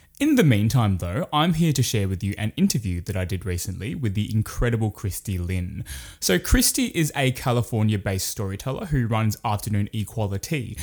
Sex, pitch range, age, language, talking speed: male, 100-130 Hz, 20-39, English, 170 wpm